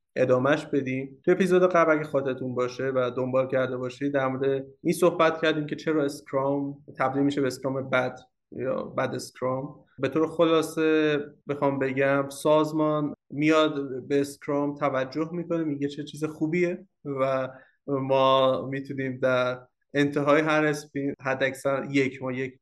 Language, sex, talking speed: Persian, male, 140 wpm